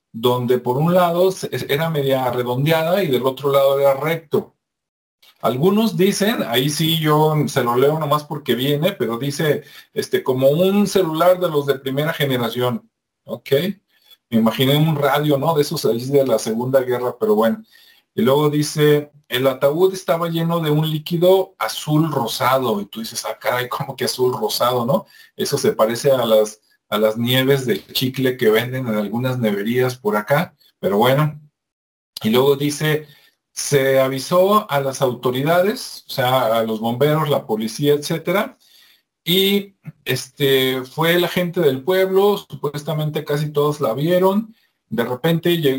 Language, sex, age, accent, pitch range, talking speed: Spanish, male, 40-59, Mexican, 130-170 Hz, 160 wpm